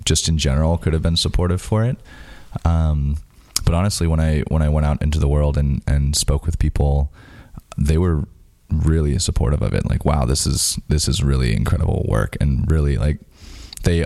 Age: 20-39